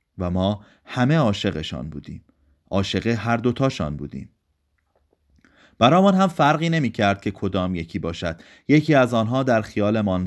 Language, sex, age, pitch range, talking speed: Persian, male, 30-49, 90-125 Hz, 130 wpm